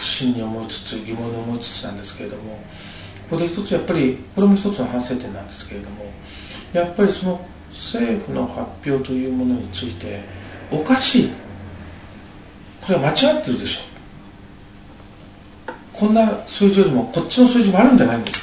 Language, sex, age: Japanese, male, 40-59